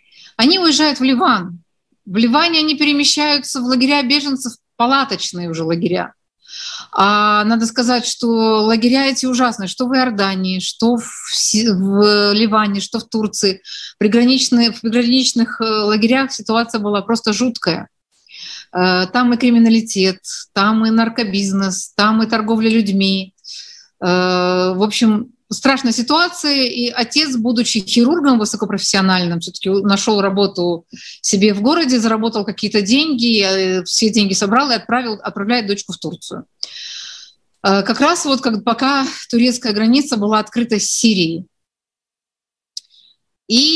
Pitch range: 200-255 Hz